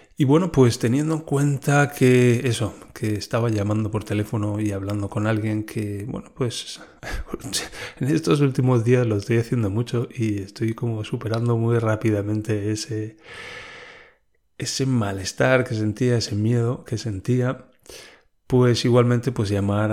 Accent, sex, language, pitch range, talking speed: Spanish, male, Spanish, 105-125 Hz, 140 wpm